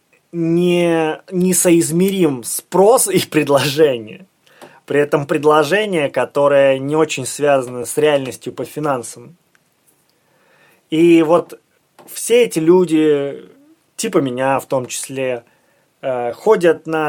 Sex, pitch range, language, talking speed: male, 130-165 Hz, Russian, 100 wpm